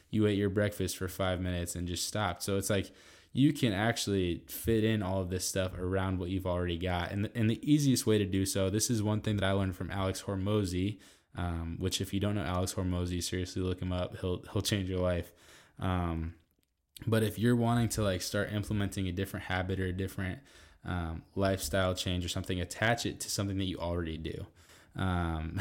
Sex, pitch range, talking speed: male, 90-105 Hz, 215 wpm